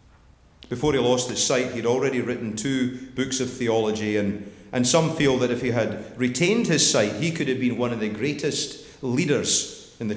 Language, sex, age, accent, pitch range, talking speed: English, male, 40-59, British, 115-140 Hz, 200 wpm